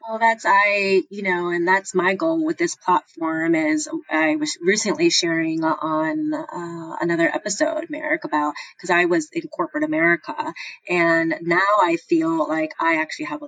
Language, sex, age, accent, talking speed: English, female, 30-49, American, 170 wpm